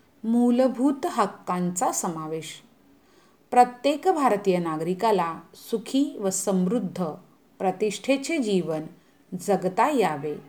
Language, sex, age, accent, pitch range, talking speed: Hindi, female, 40-59, native, 175-250 Hz, 75 wpm